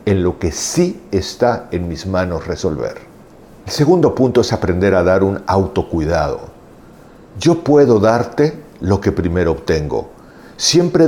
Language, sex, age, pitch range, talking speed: Spanish, male, 50-69, 90-130 Hz, 140 wpm